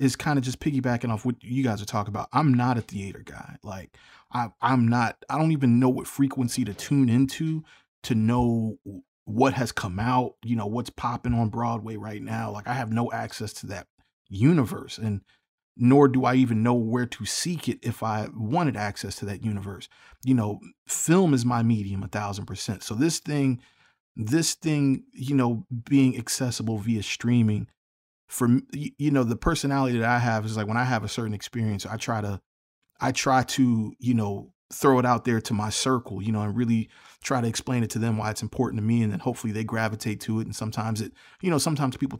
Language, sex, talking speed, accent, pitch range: English, male, 210 wpm, American, 110-130 Hz